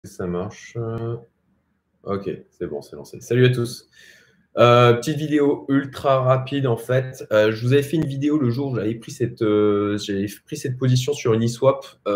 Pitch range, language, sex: 95-125 Hz, French, male